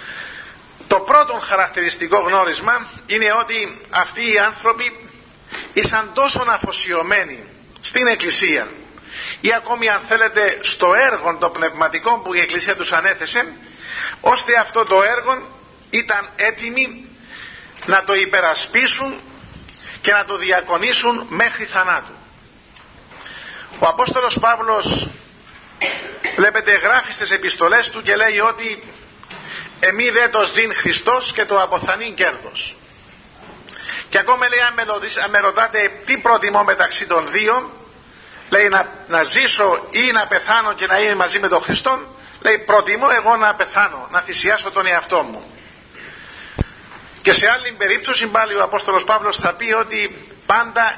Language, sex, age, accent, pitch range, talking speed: Greek, male, 50-69, native, 200-240 Hz, 125 wpm